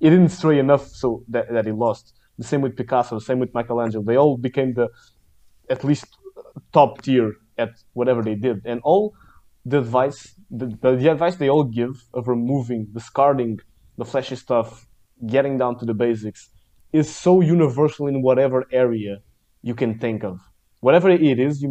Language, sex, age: English, male, 20-39